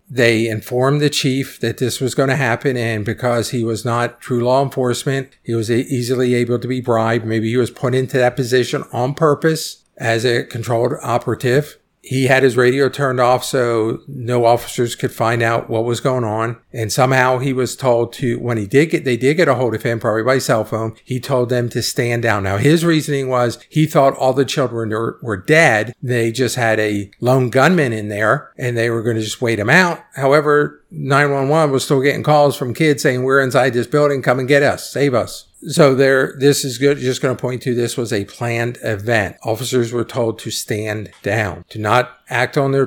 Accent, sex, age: American, male, 50-69